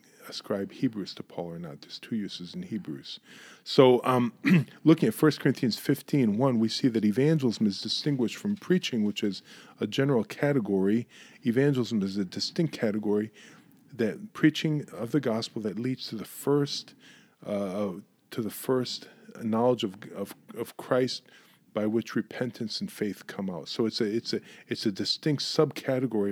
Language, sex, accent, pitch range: English, male, American, 105-145 Hz